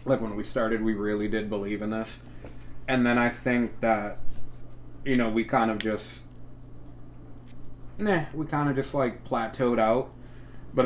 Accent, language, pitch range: American, English, 105-125 Hz